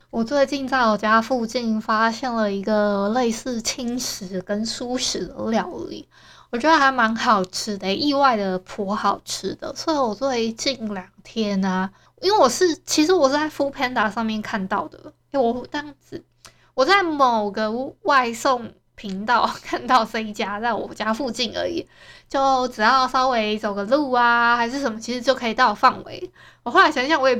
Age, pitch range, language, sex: 20-39, 225-290 Hz, Chinese, female